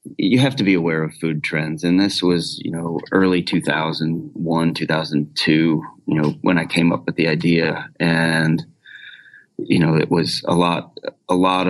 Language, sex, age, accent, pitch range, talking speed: English, male, 30-49, American, 85-95 Hz, 175 wpm